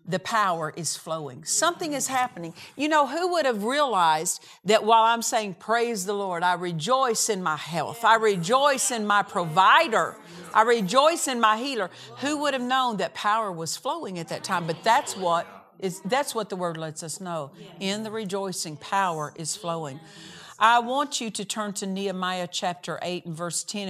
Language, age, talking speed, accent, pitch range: English, 50-69, 190 wpm, American, 165-220 Hz